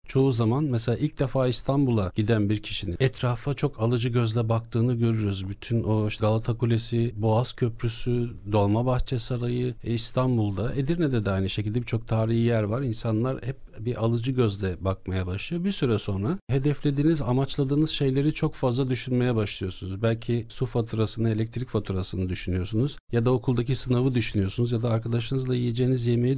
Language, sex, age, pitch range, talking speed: Turkish, male, 50-69, 115-135 Hz, 150 wpm